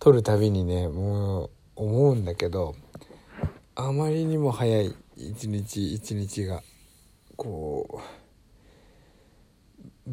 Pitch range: 100-125 Hz